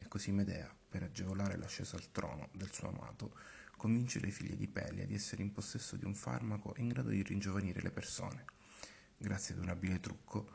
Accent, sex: native, male